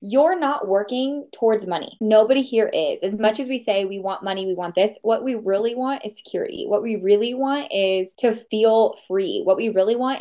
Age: 20-39